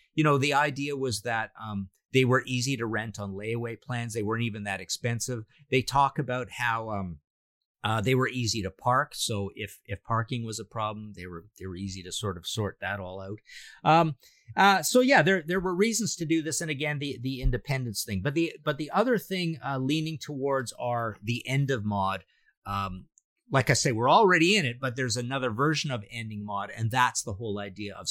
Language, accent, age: English, American, 50-69